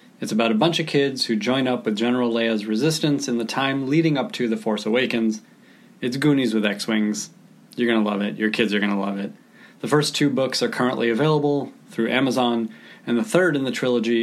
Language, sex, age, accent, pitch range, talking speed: English, male, 30-49, American, 110-135 Hz, 225 wpm